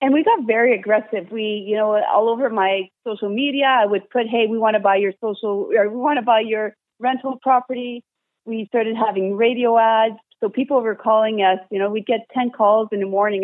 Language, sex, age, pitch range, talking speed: English, female, 40-59, 190-225 Hz, 225 wpm